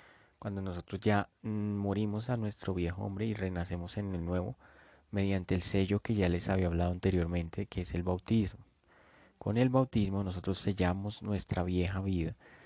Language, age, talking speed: English, 30-49, 160 wpm